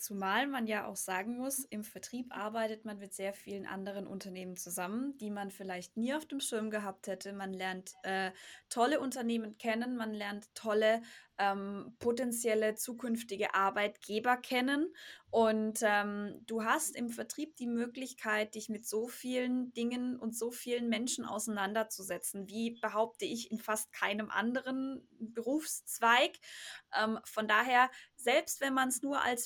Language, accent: German, German